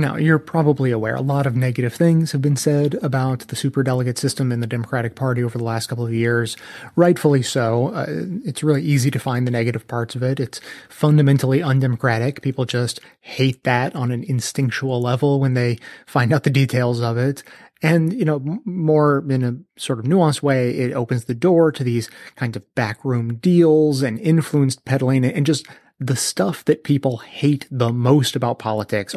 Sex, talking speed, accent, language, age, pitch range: male, 190 wpm, American, English, 30-49, 120-145 Hz